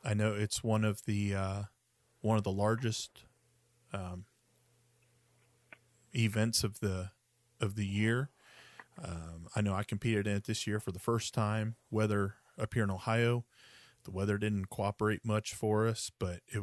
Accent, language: American, English